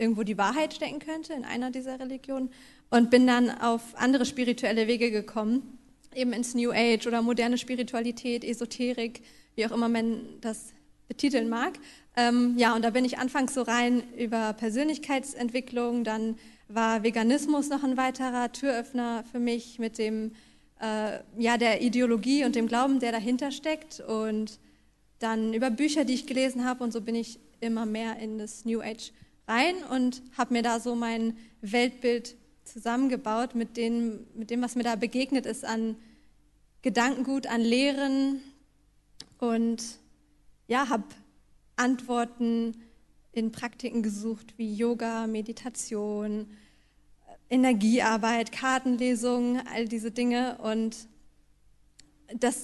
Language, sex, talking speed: German, female, 140 wpm